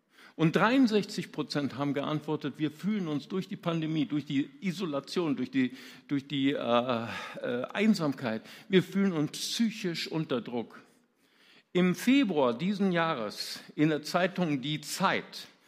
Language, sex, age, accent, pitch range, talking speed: German, male, 50-69, German, 150-205 Hz, 130 wpm